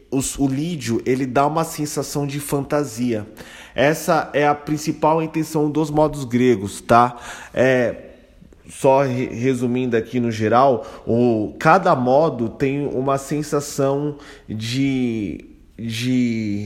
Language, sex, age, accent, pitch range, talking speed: Portuguese, male, 20-39, Brazilian, 120-145 Hz, 120 wpm